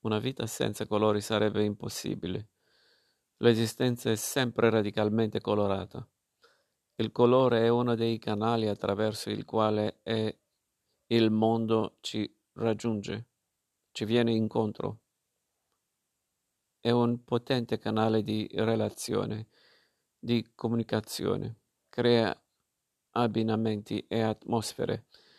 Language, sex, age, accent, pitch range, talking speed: Italian, male, 50-69, native, 110-120 Hz, 95 wpm